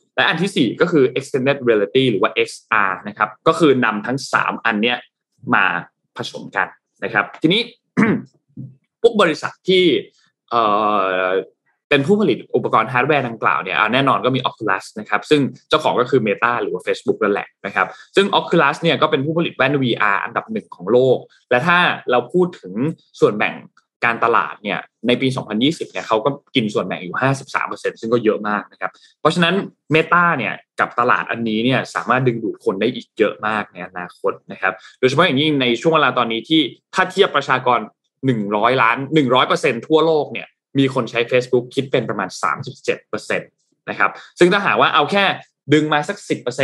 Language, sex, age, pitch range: Thai, male, 20-39, 115-160 Hz